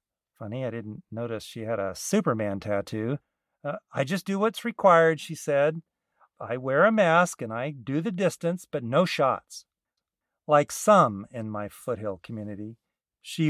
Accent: American